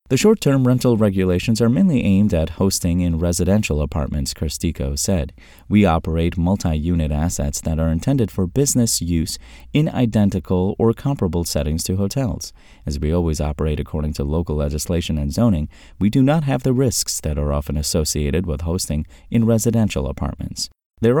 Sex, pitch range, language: male, 75-115 Hz, English